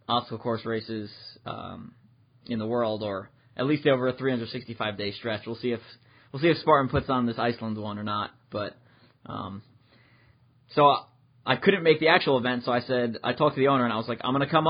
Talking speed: 225 wpm